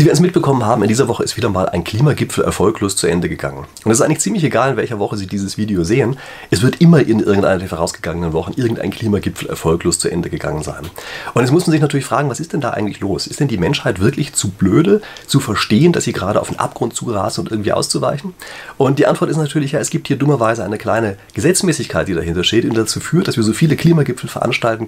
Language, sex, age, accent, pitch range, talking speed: German, male, 30-49, German, 105-150 Hz, 245 wpm